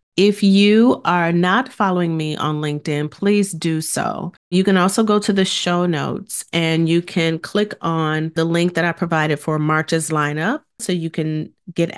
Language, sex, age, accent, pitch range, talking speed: English, female, 40-59, American, 155-185 Hz, 180 wpm